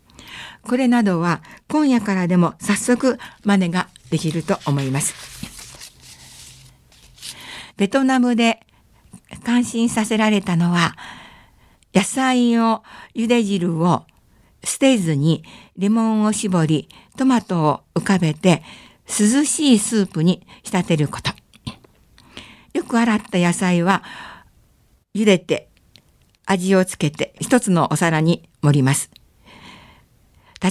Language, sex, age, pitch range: Japanese, female, 60-79, 165-230 Hz